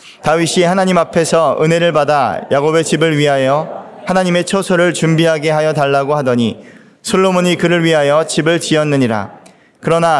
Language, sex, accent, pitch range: Korean, male, native, 140-180 Hz